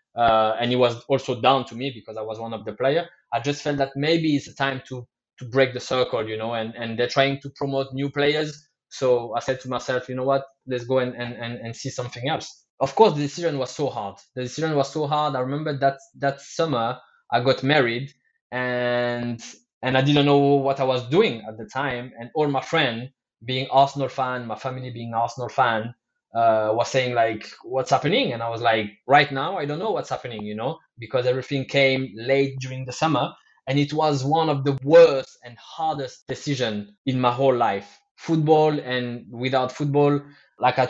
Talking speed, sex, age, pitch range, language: 210 wpm, male, 20-39, 120-145 Hz, English